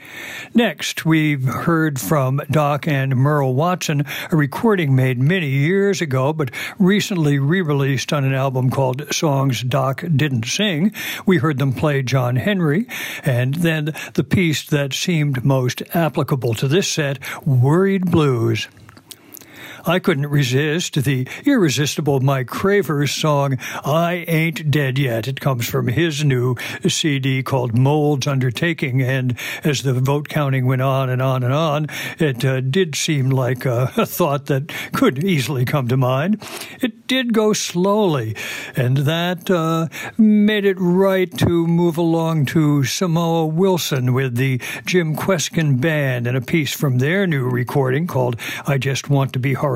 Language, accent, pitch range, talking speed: English, American, 130-170 Hz, 150 wpm